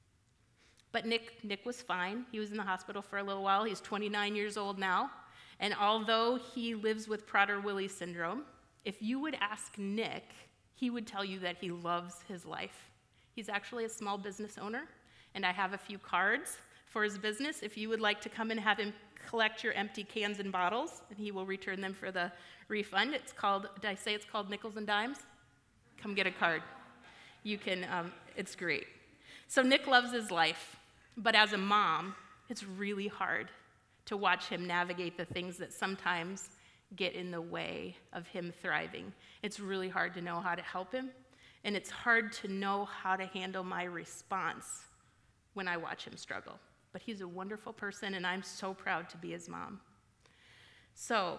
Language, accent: English, American